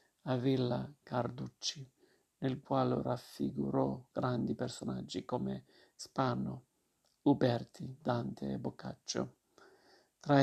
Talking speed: 85 wpm